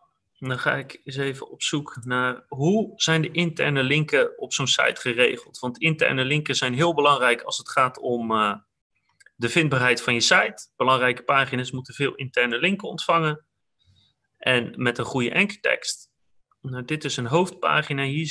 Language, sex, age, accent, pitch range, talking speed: Dutch, male, 30-49, Dutch, 125-165 Hz, 165 wpm